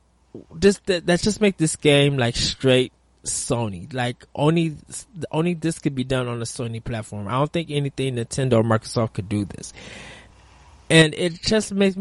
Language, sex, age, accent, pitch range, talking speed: English, male, 20-39, American, 115-150 Hz, 180 wpm